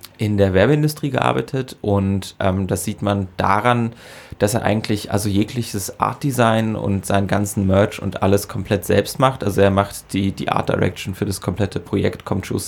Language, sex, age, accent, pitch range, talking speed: German, male, 20-39, German, 95-105 Hz, 180 wpm